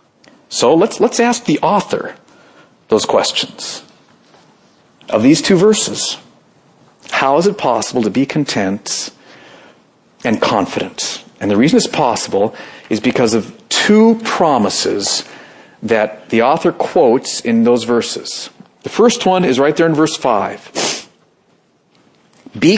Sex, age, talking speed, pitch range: male, 50-69, 125 wpm, 135-215 Hz